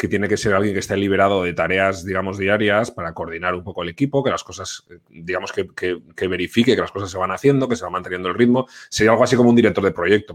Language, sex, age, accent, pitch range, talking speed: Spanish, male, 30-49, Spanish, 95-110 Hz, 265 wpm